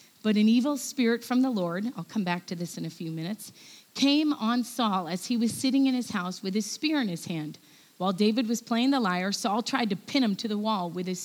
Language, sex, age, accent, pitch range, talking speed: English, female, 40-59, American, 195-260 Hz, 255 wpm